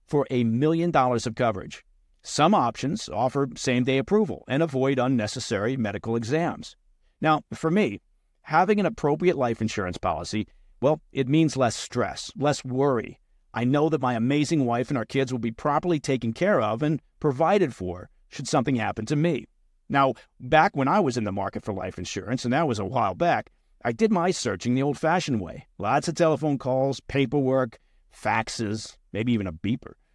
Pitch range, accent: 115-155 Hz, American